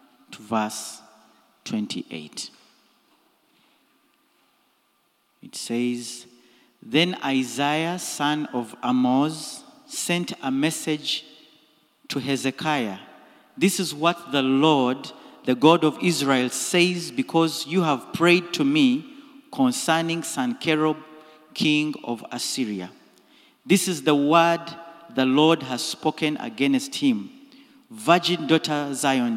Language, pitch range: English, 125-180 Hz